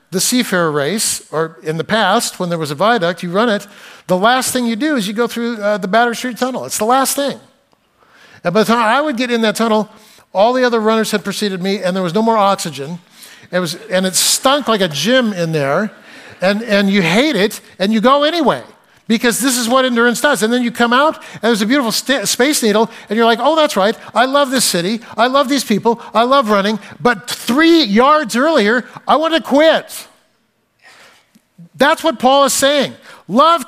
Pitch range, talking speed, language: 205-275 Hz, 220 wpm, English